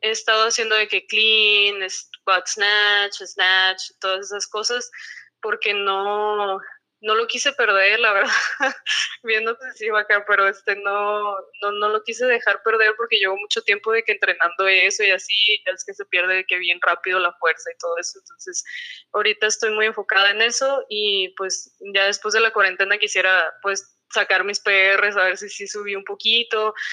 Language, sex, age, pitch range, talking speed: Spanish, female, 20-39, 195-230 Hz, 185 wpm